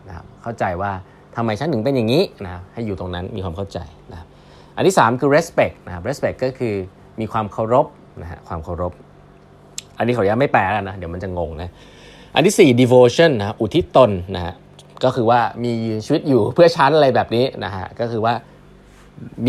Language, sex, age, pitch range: Thai, male, 20-39, 90-125 Hz